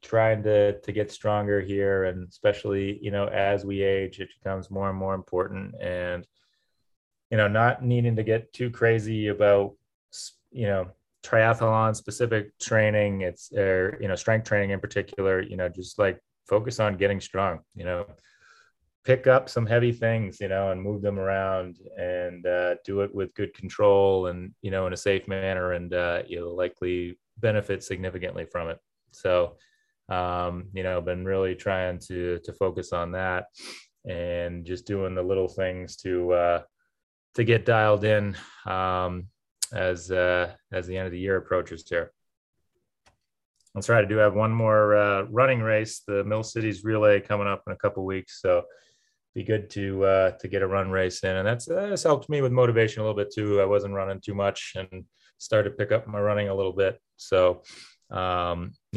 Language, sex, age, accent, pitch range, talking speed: English, male, 30-49, American, 90-105 Hz, 185 wpm